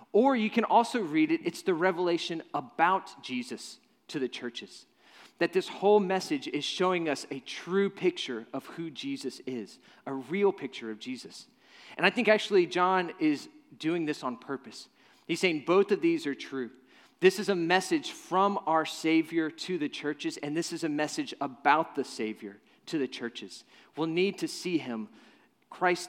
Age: 30-49